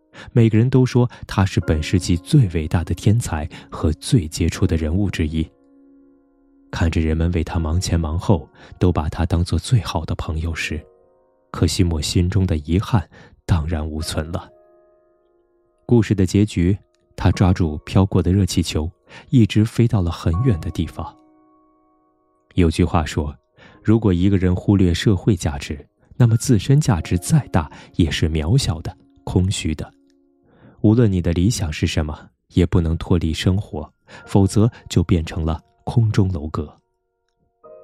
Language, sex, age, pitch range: Chinese, male, 20-39, 80-105 Hz